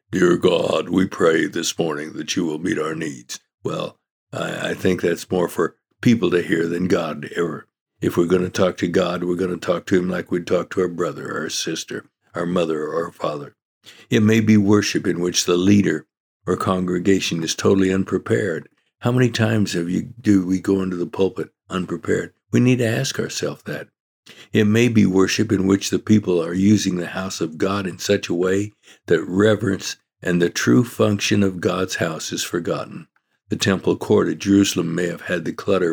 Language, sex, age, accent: English, male, 60-79, American